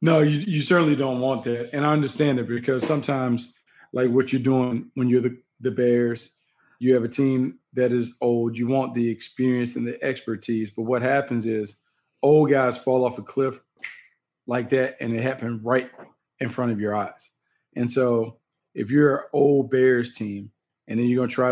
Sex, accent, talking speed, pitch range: male, American, 200 wpm, 120-135 Hz